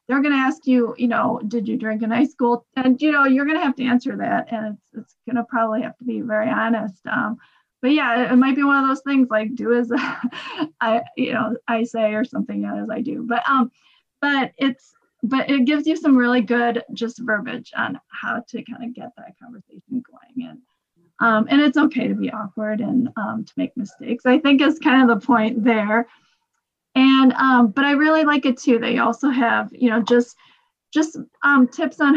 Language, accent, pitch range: English, American, 230-265 Hz